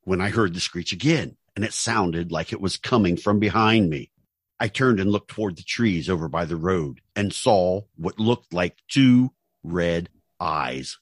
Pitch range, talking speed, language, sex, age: 90-115 Hz, 190 wpm, English, male, 50-69